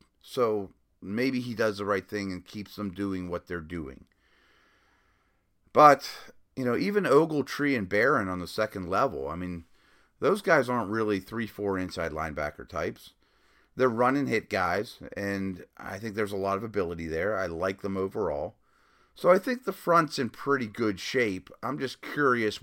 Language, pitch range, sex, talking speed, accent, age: English, 95-125 Hz, male, 170 wpm, American, 40-59